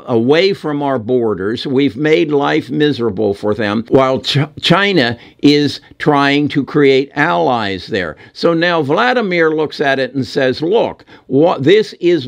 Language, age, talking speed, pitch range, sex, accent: English, 60-79, 140 wpm, 120-160 Hz, male, American